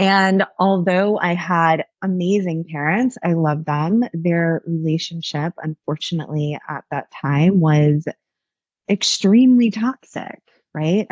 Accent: American